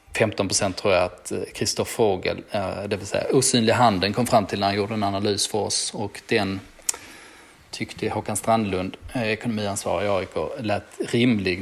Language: Swedish